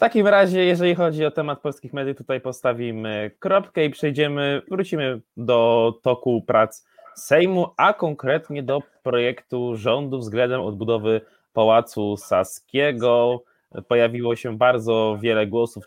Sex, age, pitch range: male, 20-39, 110-140 Hz